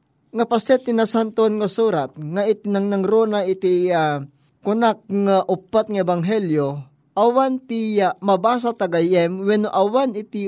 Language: Filipino